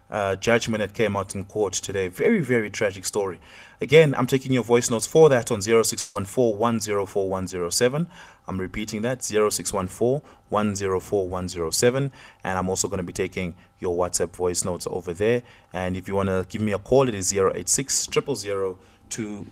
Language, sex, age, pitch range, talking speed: English, male, 30-49, 100-140 Hz, 230 wpm